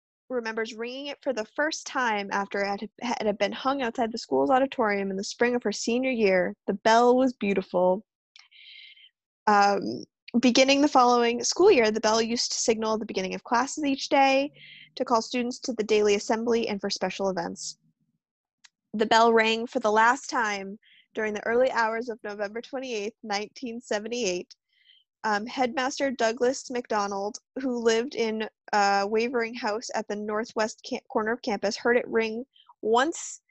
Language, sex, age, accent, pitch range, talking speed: English, female, 20-39, American, 210-250 Hz, 165 wpm